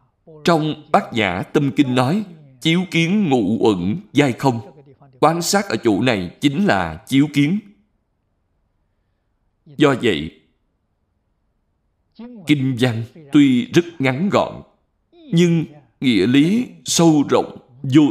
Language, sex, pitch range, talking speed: Vietnamese, male, 105-175 Hz, 115 wpm